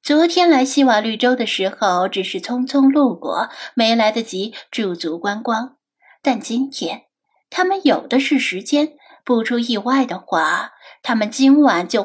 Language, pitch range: Chinese, 210-275 Hz